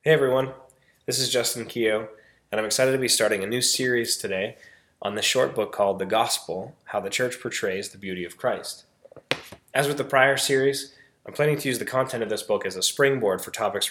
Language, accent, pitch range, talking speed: English, American, 110-140 Hz, 215 wpm